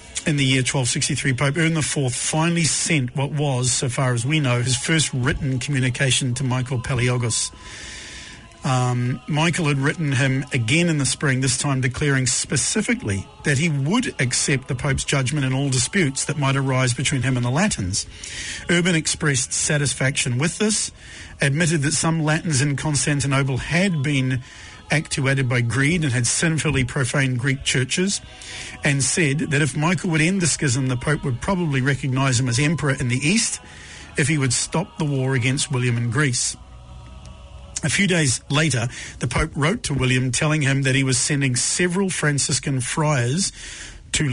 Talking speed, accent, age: 170 wpm, Australian, 50-69